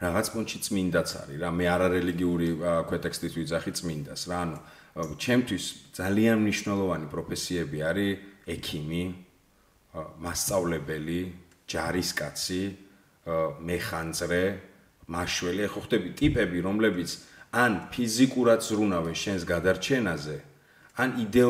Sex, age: male, 40-59